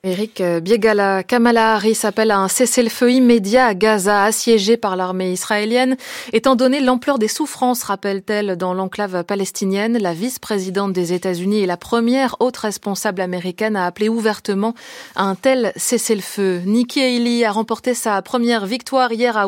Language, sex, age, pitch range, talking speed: French, female, 20-39, 200-245 Hz, 155 wpm